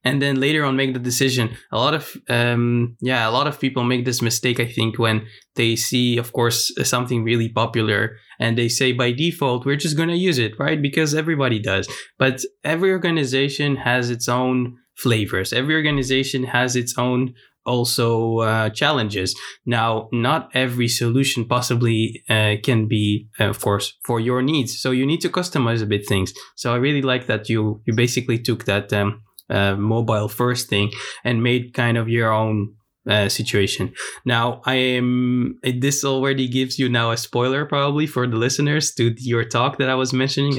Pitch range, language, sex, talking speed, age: 115-135 Hz, English, male, 185 wpm, 20-39